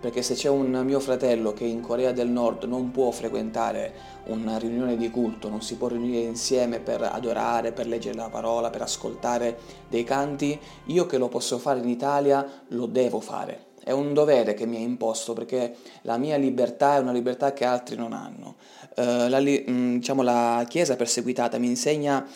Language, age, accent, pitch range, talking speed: Italian, 20-39, native, 120-135 Hz, 180 wpm